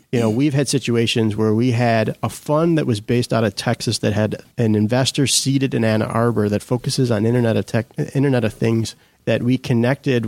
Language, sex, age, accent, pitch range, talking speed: English, male, 30-49, American, 110-125 Hz, 210 wpm